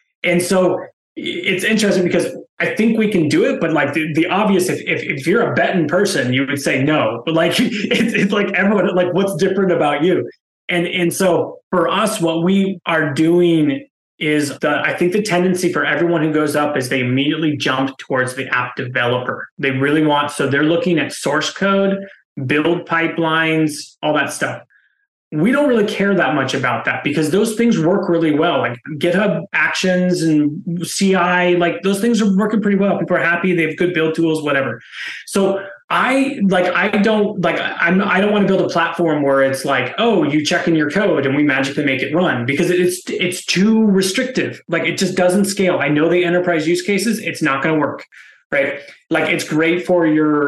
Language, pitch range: English, 145-190 Hz